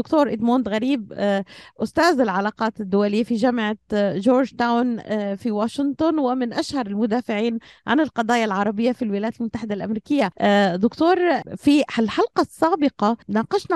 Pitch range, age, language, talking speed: 205-260 Hz, 30-49, Arabic, 120 wpm